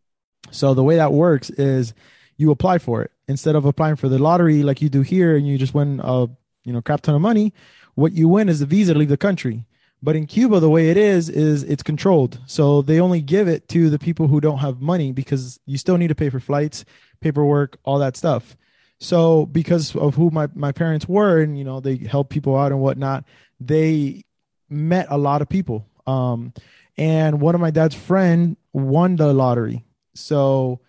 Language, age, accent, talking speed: English, 20-39, American, 210 wpm